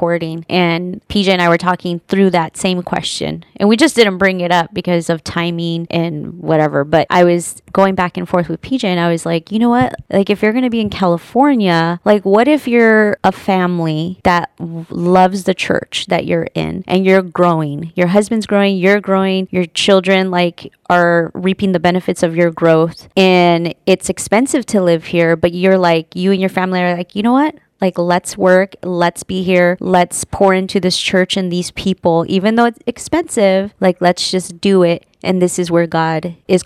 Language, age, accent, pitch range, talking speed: English, 20-39, American, 170-195 Hz, 205 wpm